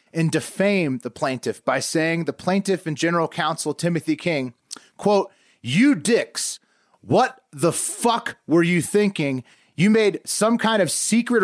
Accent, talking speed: American, 145 wpm